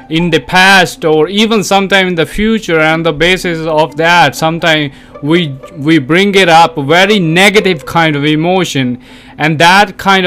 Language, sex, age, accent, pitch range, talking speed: English, male, 20-39, Indian, 140-185 Hz, 165 wpm